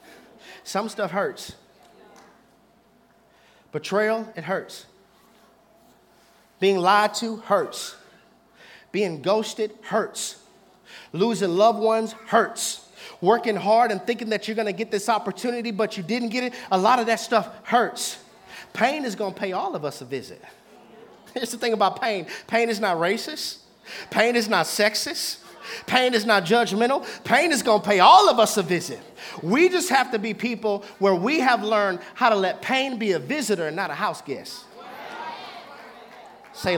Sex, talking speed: male, 160 wpm